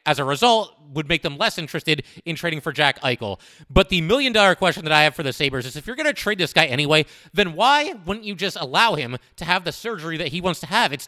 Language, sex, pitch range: English, male, 145-190 Hz